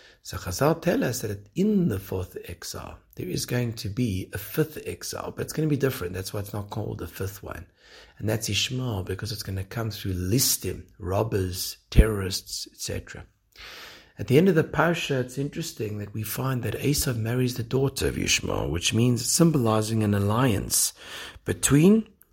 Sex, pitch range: male, 95-130 Hz